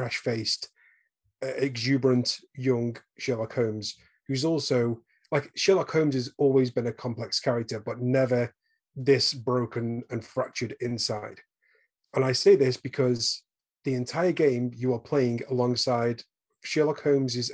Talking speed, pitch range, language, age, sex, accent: 125 wpm, 115-135 Hz, English, 30-49, male, British